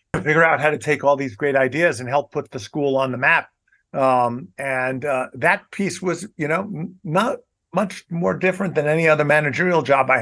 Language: English